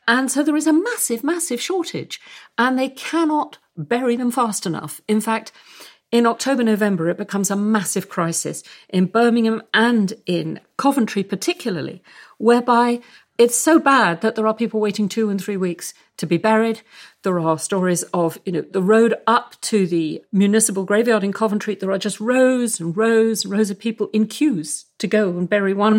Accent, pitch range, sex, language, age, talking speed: British, 175-235 Hz, female, English, 50-69, 180 wpm